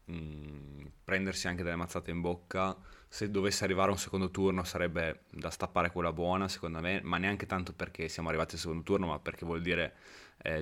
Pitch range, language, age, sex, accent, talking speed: 80-95 Hz, Italian, 20-39, male, native, 190 wpm